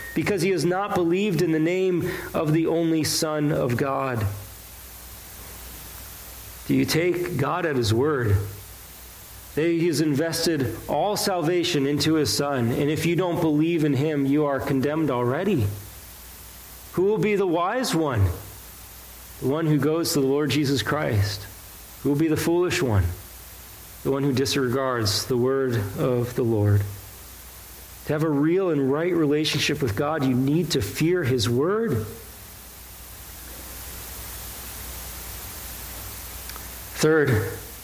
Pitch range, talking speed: 95-155 Hz, 135 wpm